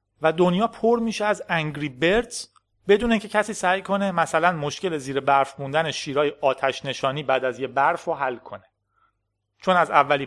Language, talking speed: Persian, 175 wpm